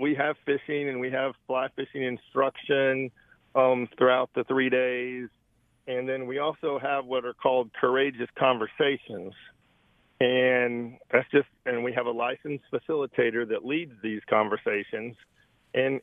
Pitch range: 120-140 Hz